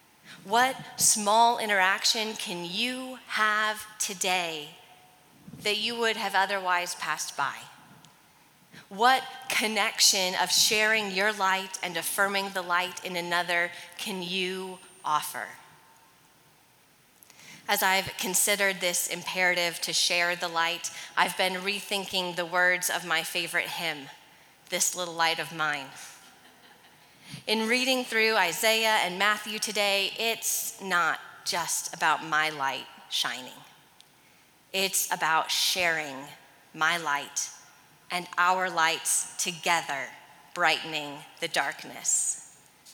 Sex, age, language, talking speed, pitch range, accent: female, 30-49, English, 110 wpm, 165-200 Hz, American